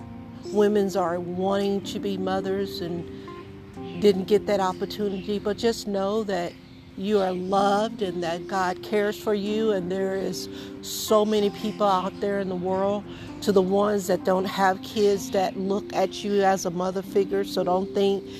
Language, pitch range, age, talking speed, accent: English, 180-205 Hz, 50-69, 175 wpm, American